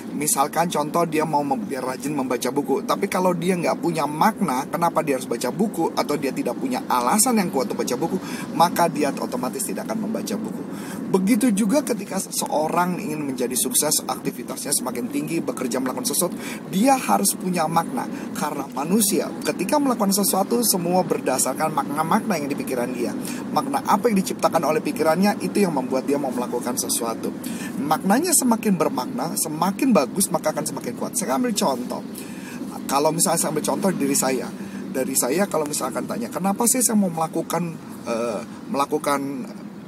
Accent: native